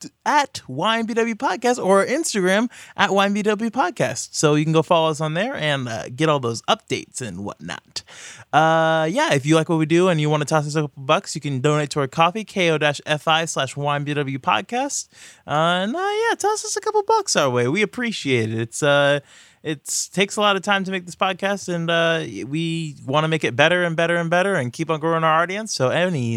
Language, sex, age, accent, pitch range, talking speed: English, male, 20-39, American, 145-195 Hz, 220 wpm